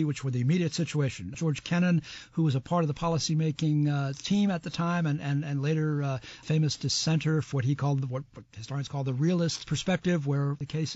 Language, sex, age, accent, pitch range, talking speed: English, male, 60-79, American, 140-165 Hz, 220 wpm